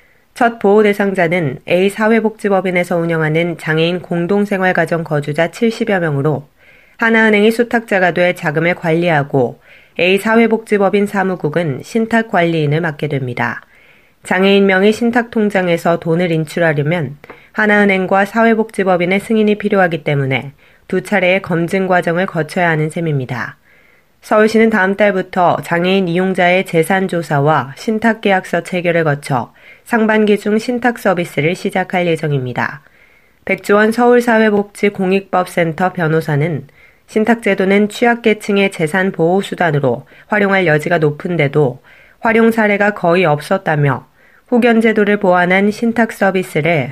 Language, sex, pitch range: Korean, female, 160-205 Hz